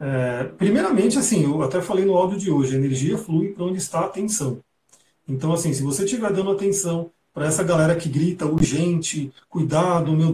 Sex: male